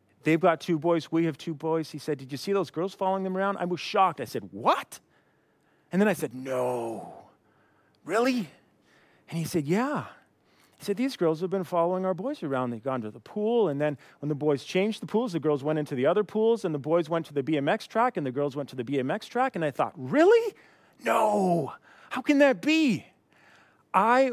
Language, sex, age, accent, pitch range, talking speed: English, male, 30-49, American, 150-215 Hz, 220 wpm